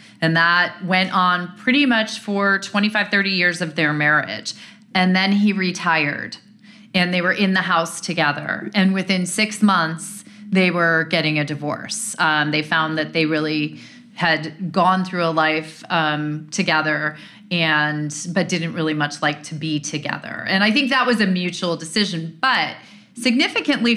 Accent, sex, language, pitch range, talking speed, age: American, female, English, 160-200 Hz, 165 wpm, 30-49